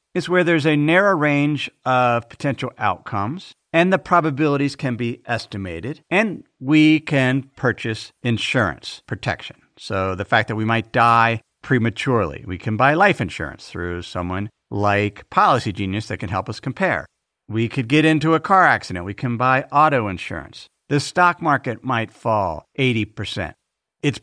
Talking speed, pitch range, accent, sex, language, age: 155 wpm, 115-155 Hz, American, male, English, 50-69